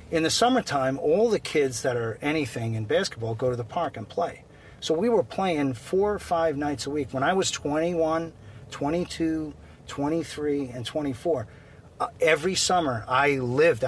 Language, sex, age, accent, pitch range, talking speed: English, male, 40-59, American, 120-150 Hz, 175 wpm